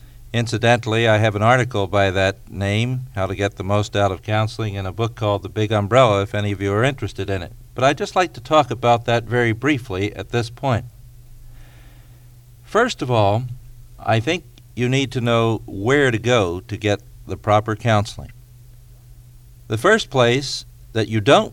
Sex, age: male, 50-69